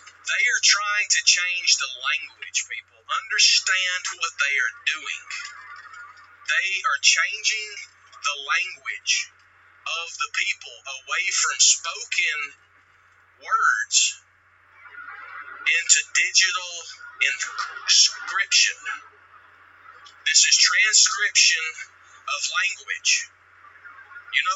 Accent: American